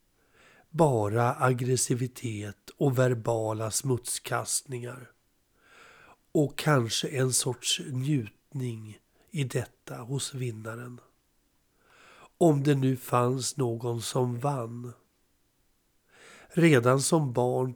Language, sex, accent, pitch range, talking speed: Swedish, male, native, 120-140 Hz, 80 wpm